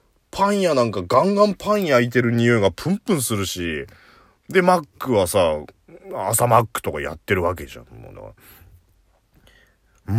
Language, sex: Japanese, male